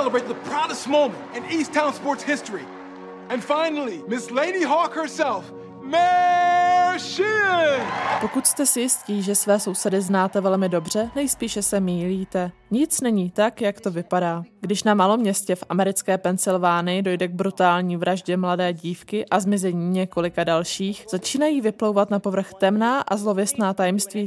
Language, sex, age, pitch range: Czech, male, 20-39, 185-230 Hz